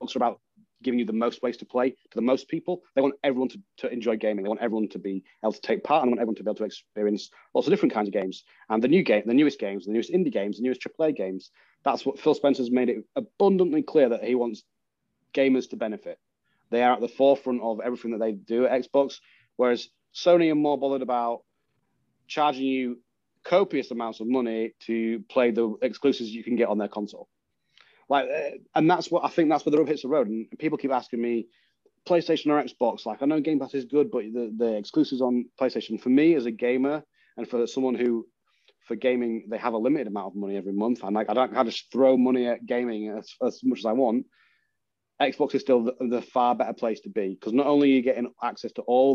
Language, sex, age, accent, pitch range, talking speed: English, male, 30-49, British, 110-135 Hz, 240 wpm